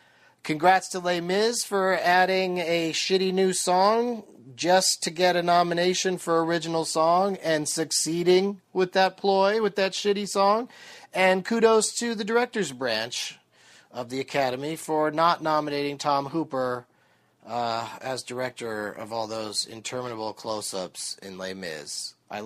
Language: English